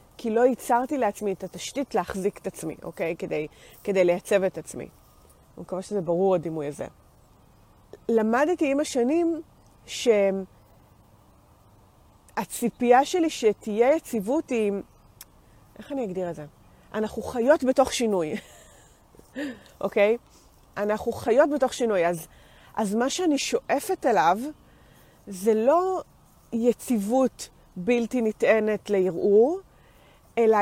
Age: 30-49